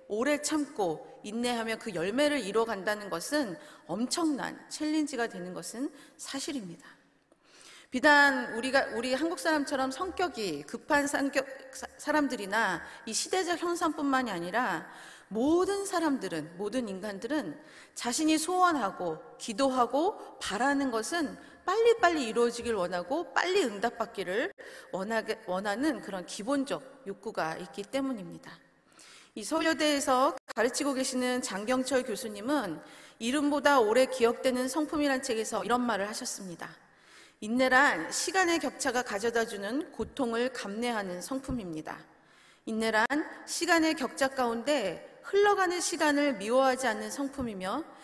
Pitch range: 225-300 Hz